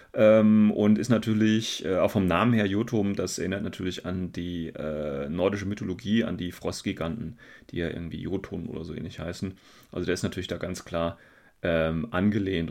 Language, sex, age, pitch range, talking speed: German, male, 30-49, 95-115 Hz, 180 wpm